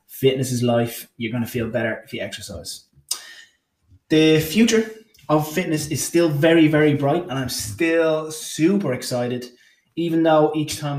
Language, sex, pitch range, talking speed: English, male, 115-135 Hz, 160 wpm